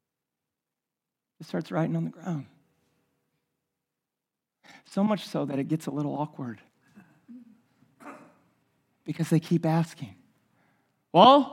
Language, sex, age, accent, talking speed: English, male, 40-59, American, 105 wpm